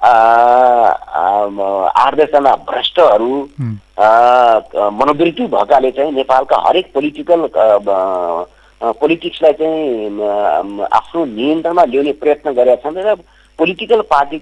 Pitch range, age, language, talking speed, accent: 115-160 Hz, 50-69, English, 100 wpm, Indian